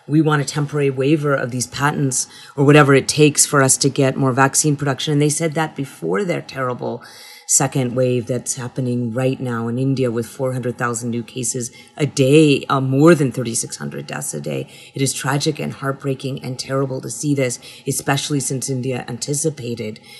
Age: 40-59